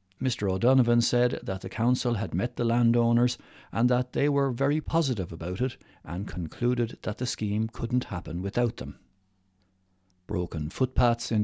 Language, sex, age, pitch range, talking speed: English, male, 60-79, 95-120 Hz, 155 wpm